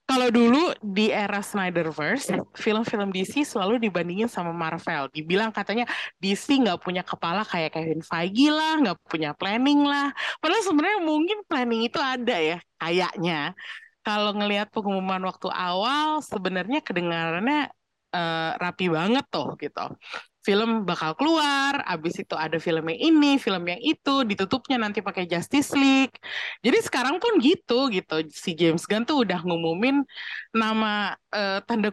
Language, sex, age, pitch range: Indonesian, female, 20-39, 180-280 Hz